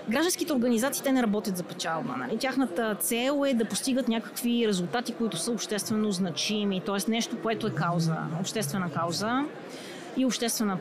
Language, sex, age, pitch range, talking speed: Bulgarian, female, 30-49, 200-250 Hz, 155 wpm